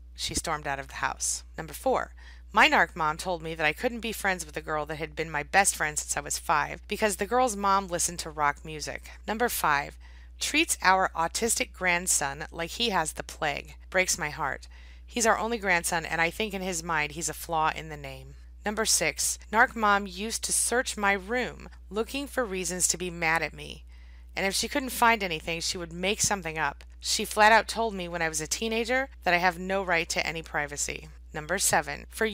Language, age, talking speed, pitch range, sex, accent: English, 30-49, 215 wpm, 155-215 Hz, female, American